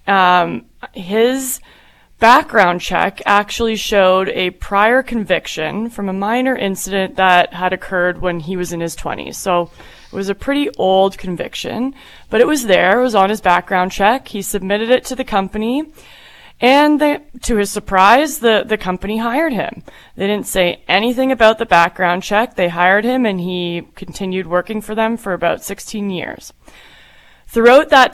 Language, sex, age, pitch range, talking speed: English, female, 20-39, 180-225 Hz, 165 wpm